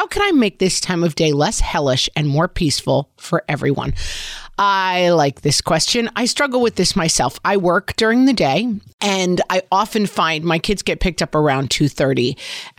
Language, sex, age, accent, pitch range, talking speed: English, female, 40-59, American, 145-185 Hz, 190 wpm